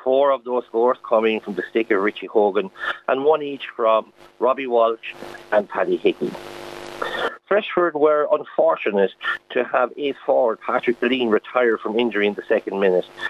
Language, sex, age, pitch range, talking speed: English, male, 50-69, 115-140 Hz, 165 wpm